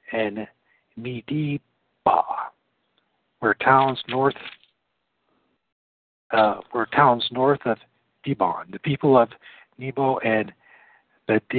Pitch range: 110-145 Hz